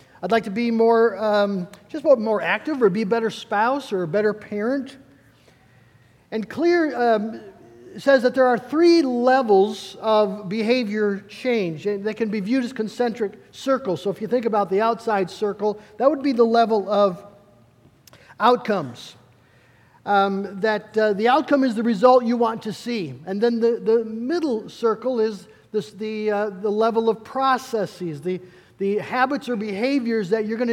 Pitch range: 200-245 Hz